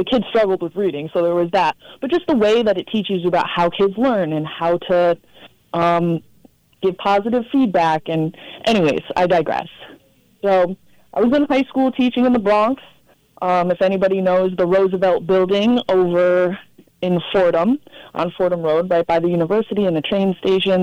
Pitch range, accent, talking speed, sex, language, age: 175-225 Hz, American, 180 wpm, female, English, 20-39